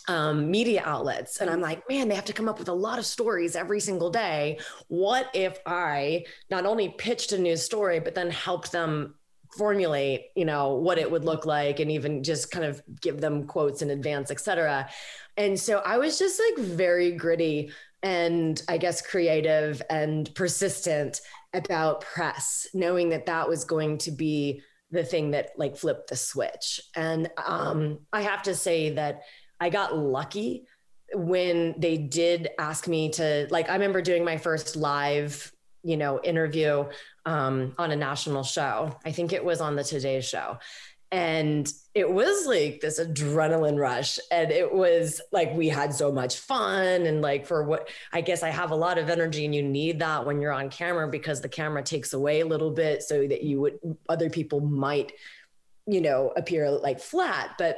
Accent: American